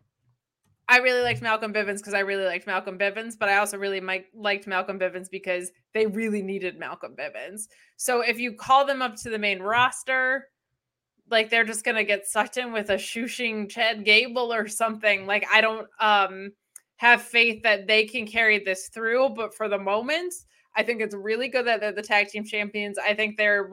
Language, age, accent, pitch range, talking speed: English, 20-39, American, 195-230 Hz, 200 wpm